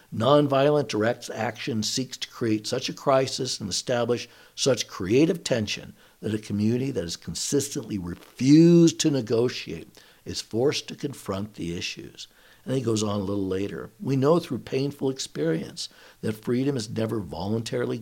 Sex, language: male, English